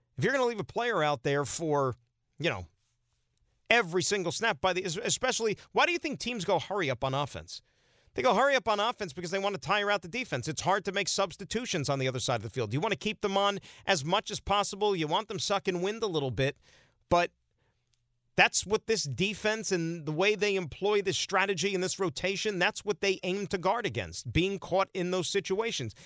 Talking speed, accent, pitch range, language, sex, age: 230 wpm, American, 140-200 Hz, English, male, 40-59